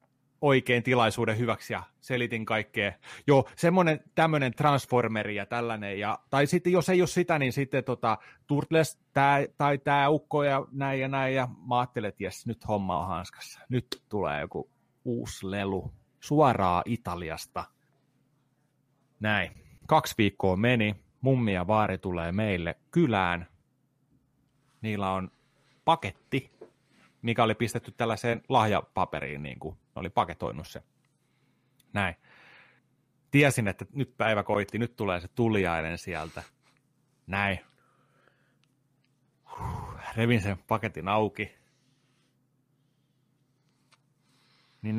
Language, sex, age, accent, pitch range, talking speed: Finnish, male, 30-49, native, 100-140 Hz, 110 wpm